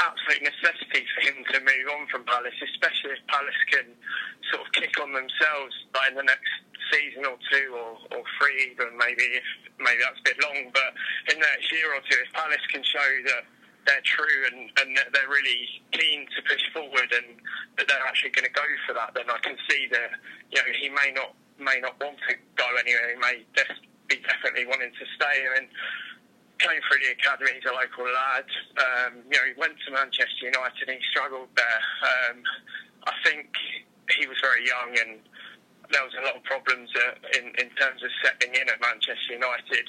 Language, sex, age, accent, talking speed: English, male, 20-39, British, 210 wpm